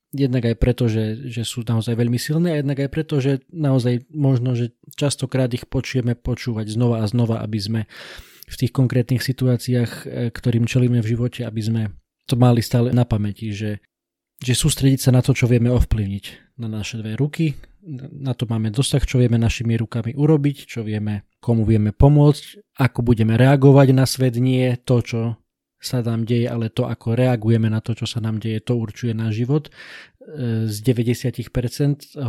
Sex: male